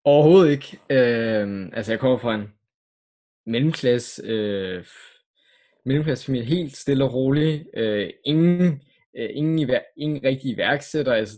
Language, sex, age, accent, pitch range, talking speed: Danish, male, 20-39, native, 120-150 Hz, 125 wpm